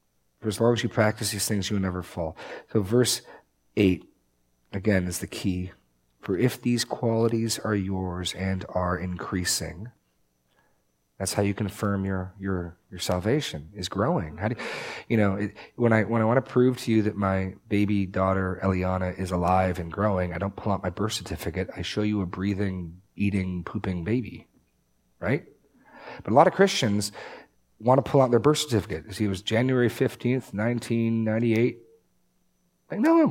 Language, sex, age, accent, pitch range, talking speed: English, male, 40-59, American, 95-125 Hz, 175 wpm